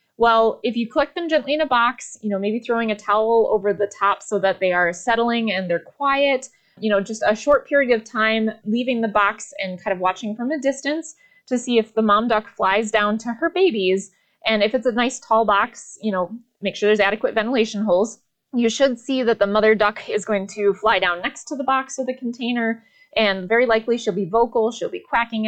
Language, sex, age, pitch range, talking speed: English, female, 20-39, 205-265 Hz, 230 wpm